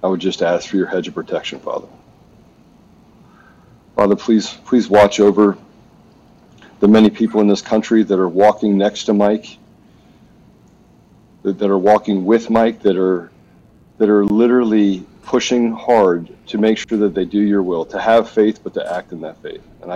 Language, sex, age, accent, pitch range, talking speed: English, male, 40-59, American, 95-105 Hz, 170 wpm